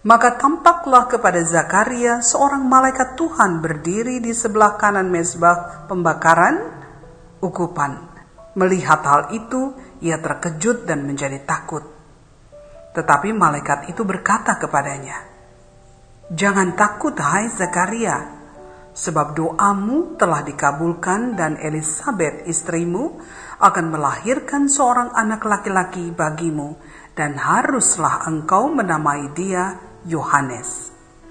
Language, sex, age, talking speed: Indonesian, female, 50-69, 95 wpm